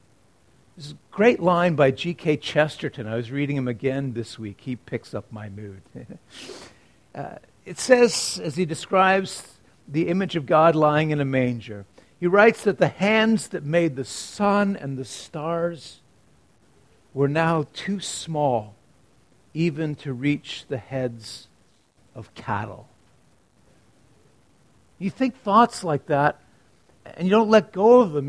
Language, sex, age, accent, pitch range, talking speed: English, male, 50-69, American, 135-205 Hz, 145 wpm